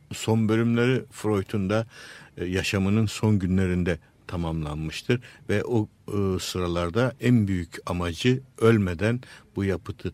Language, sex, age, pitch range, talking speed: Turkish, male, 60-79, 95-125 Hz, 100 wpm